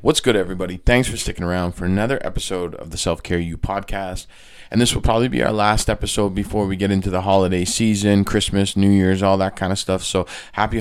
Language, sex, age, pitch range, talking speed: English, male, 20-39, 95-105 Hz, 220 wpm